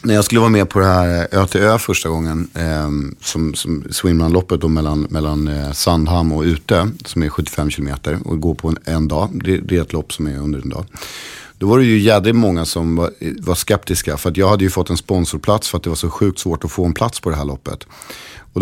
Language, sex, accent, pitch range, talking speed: English, male, Swedish, 80-100 Hz, 235 wpm